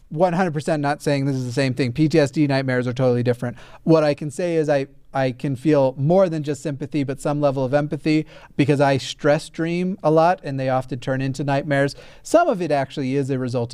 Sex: male